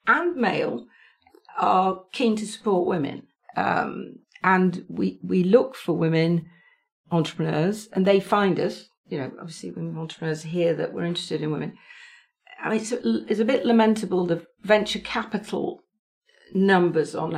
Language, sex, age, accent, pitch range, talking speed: English, female, 50-69, British, 170-215 Hz, 145 wpm